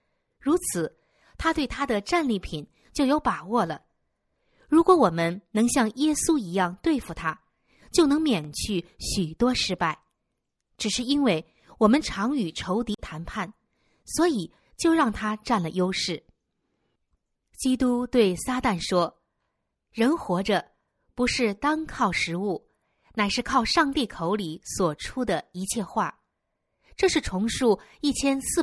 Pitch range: 180-270 Hz